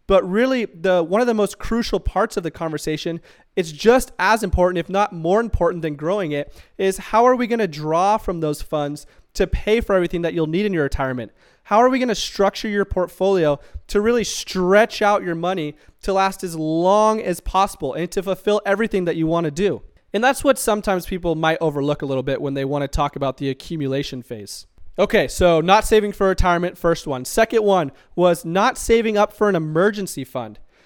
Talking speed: 210 wpm